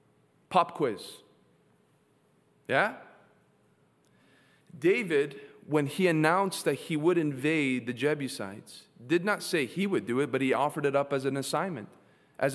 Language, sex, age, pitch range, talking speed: English, male, 30-49, 135-175 Hz, 140 wpm